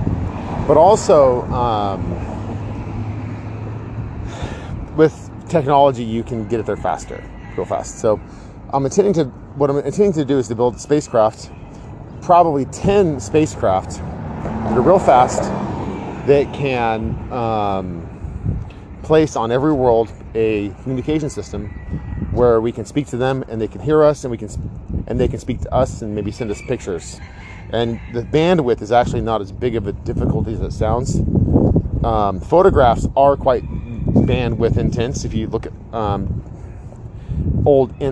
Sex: male